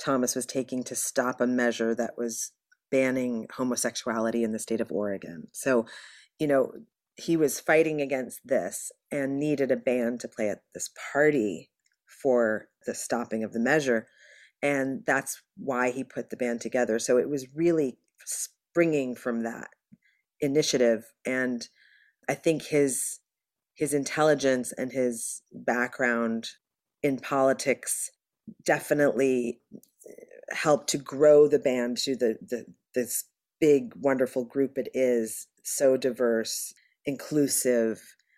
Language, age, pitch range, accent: English, 40-59, 120-145 Hz, American